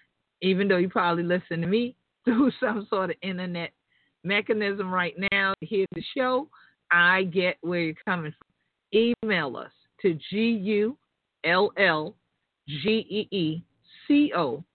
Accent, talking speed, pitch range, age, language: American, 120 wpm, 170-205 Hz, 50-69, English